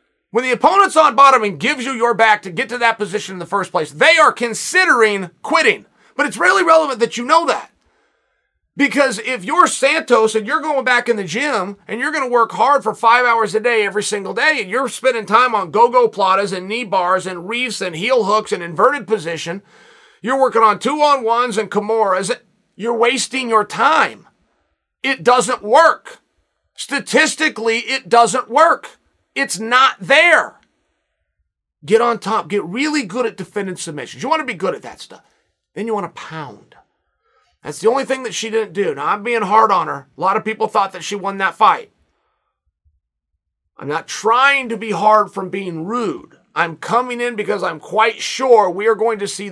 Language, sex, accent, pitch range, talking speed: English, male, American, 190-250 Hz, 195 wpm